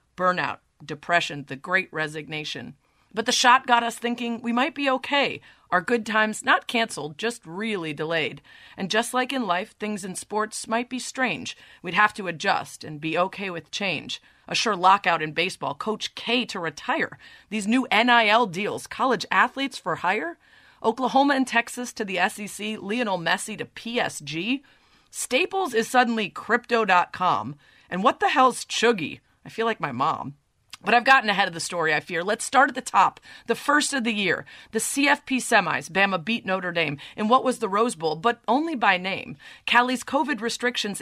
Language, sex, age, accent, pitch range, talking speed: English, female, 30-49, American, 180-245 Hz, 180 wpm